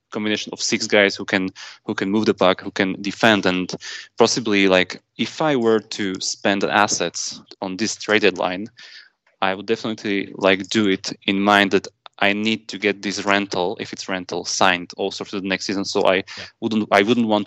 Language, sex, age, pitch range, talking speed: English, male, 20-39, 95-110 Hz, 195 wpm